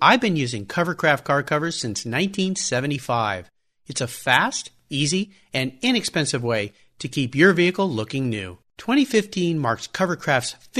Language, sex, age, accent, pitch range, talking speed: English, male, 50-69, American, 125-185 Hz, 135 wpm